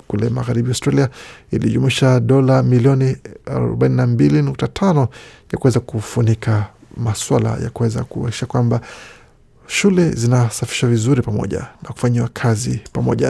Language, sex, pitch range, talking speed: Swahili, male, 115-140 Hz, 105 wpm